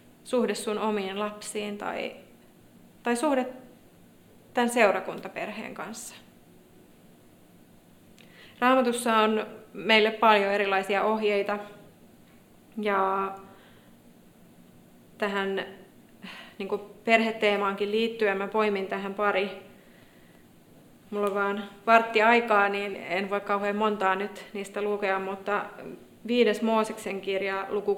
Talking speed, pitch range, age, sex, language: 90 wpm, 195-220 Hz, 30-49, female, Finnish